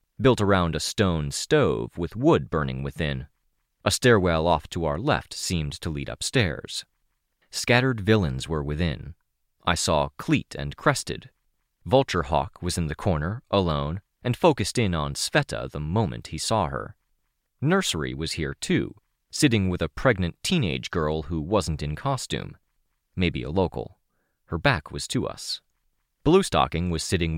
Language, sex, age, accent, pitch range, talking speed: English, male, 30-49, American, 75-105 Hz, 155 wpm